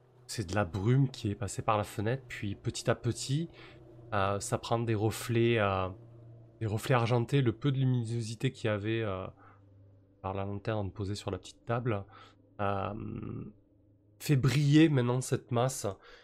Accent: French